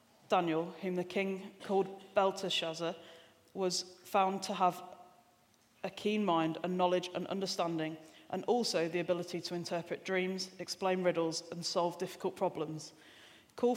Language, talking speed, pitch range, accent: English, 135 wpm, 170-190 Hz, British